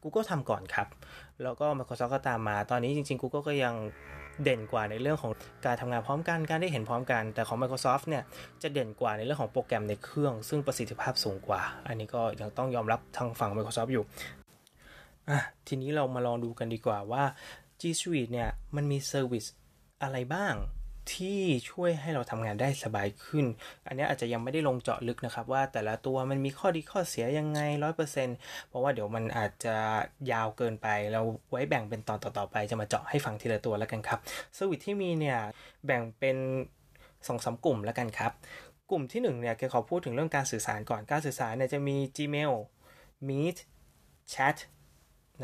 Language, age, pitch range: Thai, 20-39, 110-145 Hz